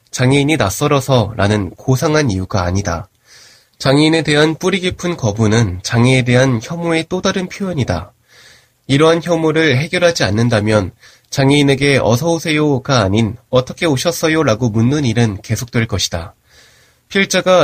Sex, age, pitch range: male, 20-39, 115-160 Hz